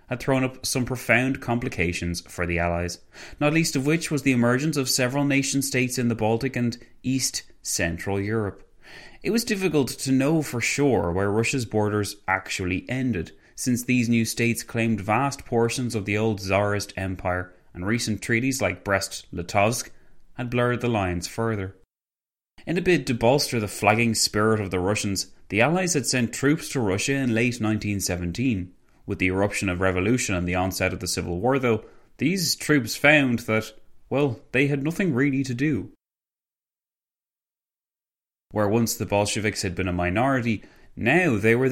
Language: English